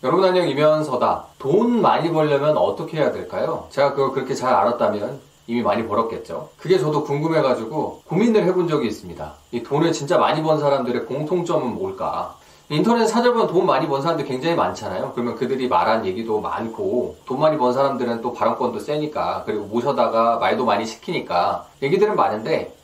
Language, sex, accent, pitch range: Korean, male, native, 135-200 Hz